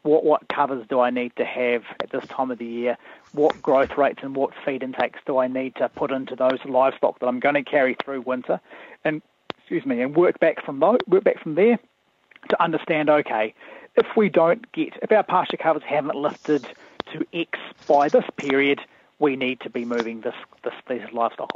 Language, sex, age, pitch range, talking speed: English, male, 30-49, 130-170 Hz, 205 wpm